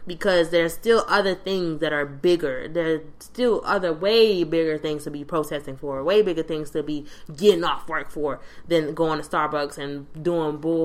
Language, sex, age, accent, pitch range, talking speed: English, female, 20-39, American, 160-200 Hz, 185 wpm